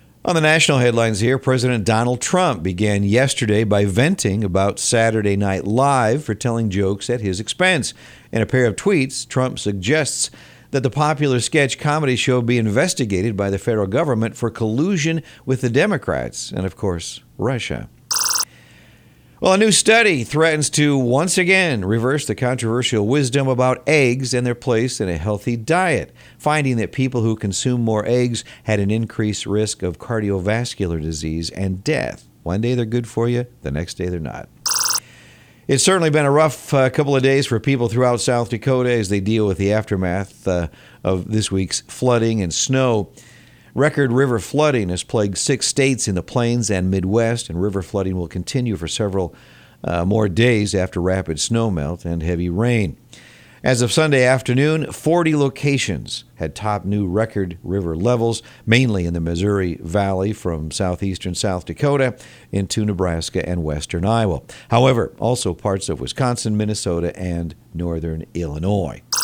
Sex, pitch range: male, 95-130 Hz